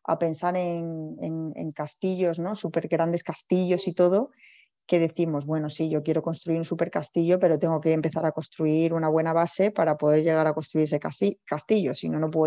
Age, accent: 20-39, Spanish